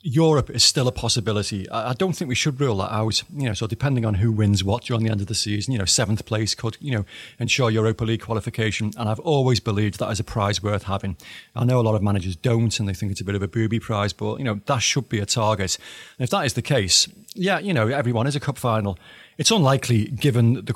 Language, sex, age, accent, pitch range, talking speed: English, male, 30-49, British, 105-125 Hz, 265 wpm